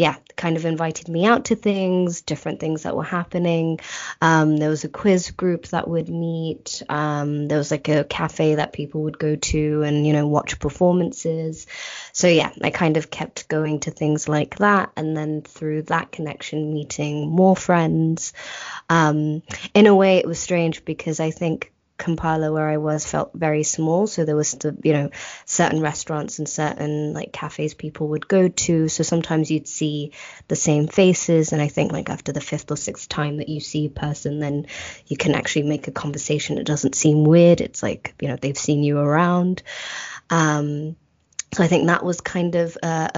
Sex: female